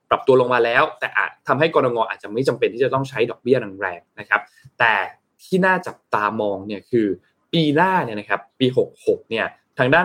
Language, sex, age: Thai, male, 20-39